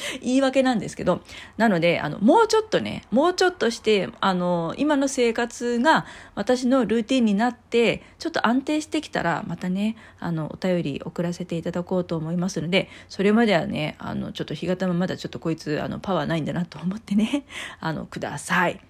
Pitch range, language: 160-225 Hz, Japanese